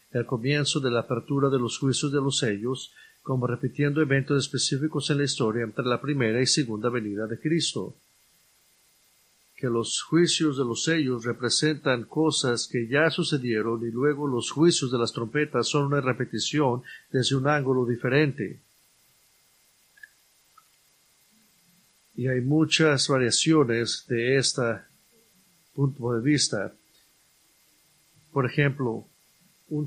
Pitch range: 120-150 Hz